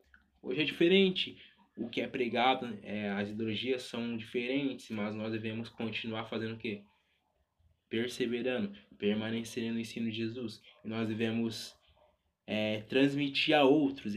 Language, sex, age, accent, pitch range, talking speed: Portuguese, male, 20-39, Brazilian, 105-135 Hz, 135 wpm